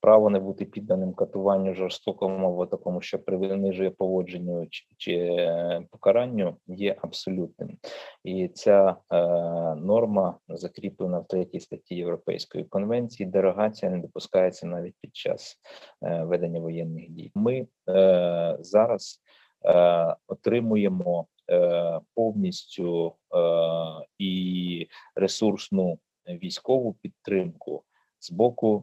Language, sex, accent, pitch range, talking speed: Ukrainian, male, native, 90-110 Hz, 100 wpm